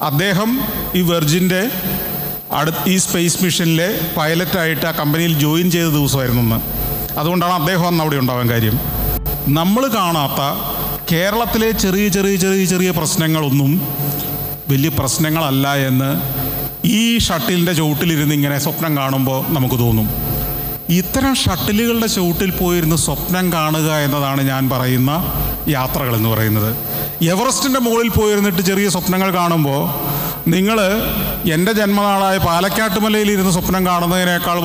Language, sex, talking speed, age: Malayalam, male, 105 wpm, 40-59